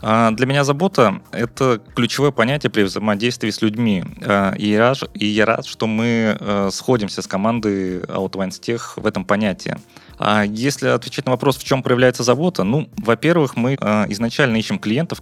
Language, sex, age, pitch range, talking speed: Russian, male, 20-39, 100-125 Hz, 150 wpm